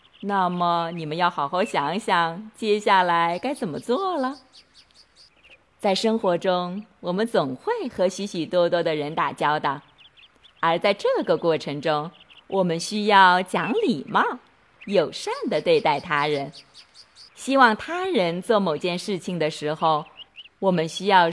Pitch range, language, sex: 170-220 Hz, Chinese, female